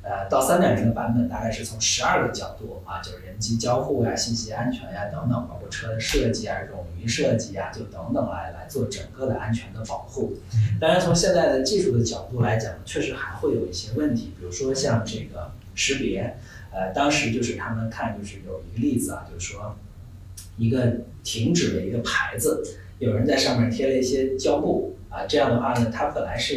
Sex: male